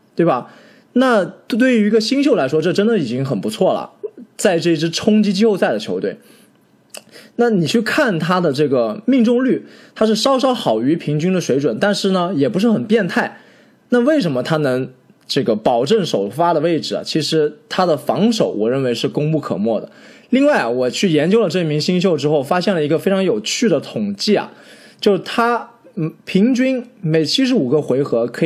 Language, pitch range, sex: Chinese, 155-225 Hz, male